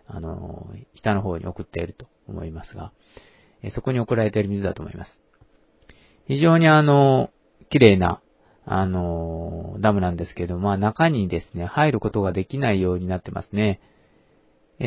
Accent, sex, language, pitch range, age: native, male, Japanese, 95-130 Hz, 40-59